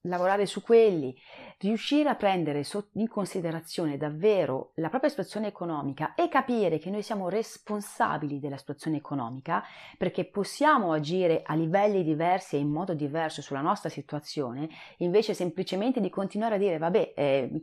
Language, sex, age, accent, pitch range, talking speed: Italian, female, 40-59, native, 155-210 Hz, 150 wpm